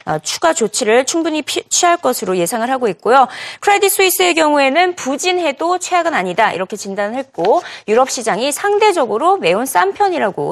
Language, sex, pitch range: Korean, female, 220-355 Hz